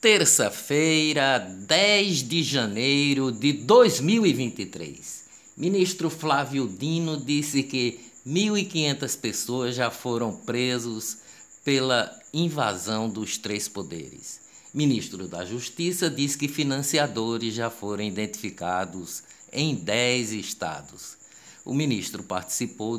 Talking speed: 95 wpm